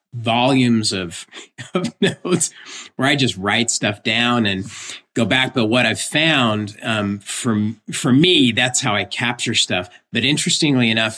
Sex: male